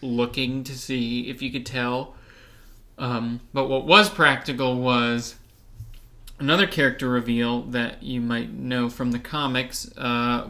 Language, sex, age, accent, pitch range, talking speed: English, male, 20-39, American, 120-135 Hz, 135 wpm